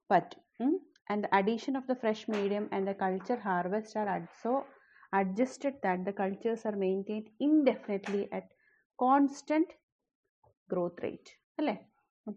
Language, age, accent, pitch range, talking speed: Malayalam, 30-49, native, 195-245 Hz, 125 wpm